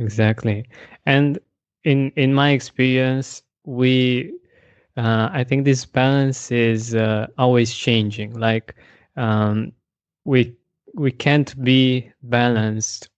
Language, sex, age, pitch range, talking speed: English, male, 20-39, 115-130 Hz, 105 wpm